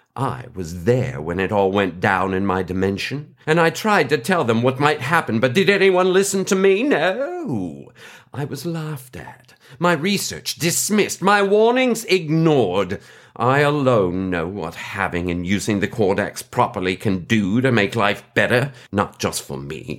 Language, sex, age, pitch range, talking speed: English, male, 50-69, 115-160 Hz, 170 wpm